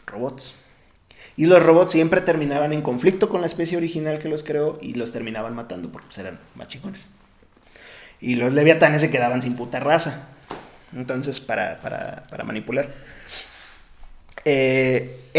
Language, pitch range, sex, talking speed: Spanish, 125-155 Hz, male, 140 wpm